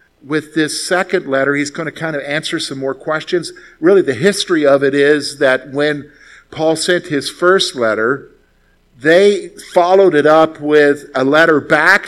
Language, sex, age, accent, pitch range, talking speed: English, male, 50-69, American, 130-180 Hz, 170 wpm